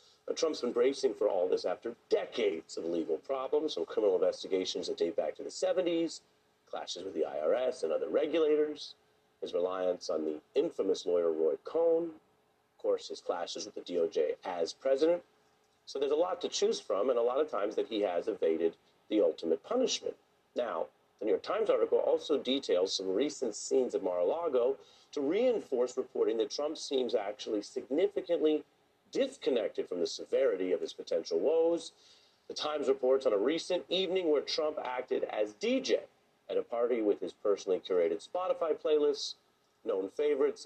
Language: English